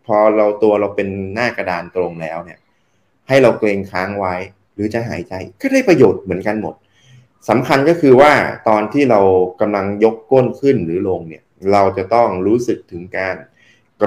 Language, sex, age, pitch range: Thai, male, 20-39, 95-135 Hz